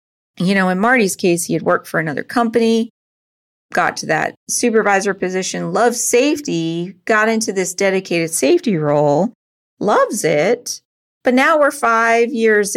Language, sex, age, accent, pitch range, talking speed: English, female, 30-49, American, 170-230 Hz, 145 wpm